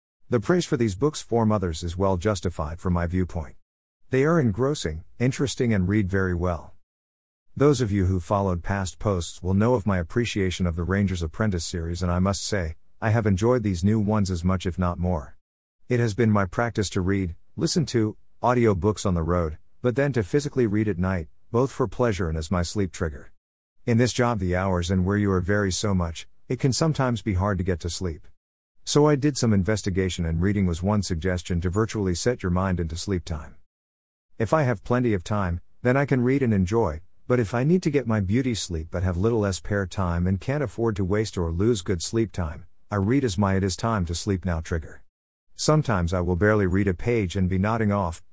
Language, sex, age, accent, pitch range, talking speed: English, male, 50-69, American, 85-115 Hz, 225 wpm